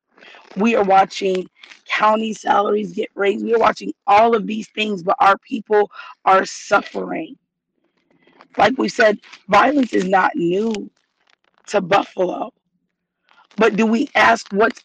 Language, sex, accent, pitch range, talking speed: English, female, American, 205-255 Hz, 135 wpm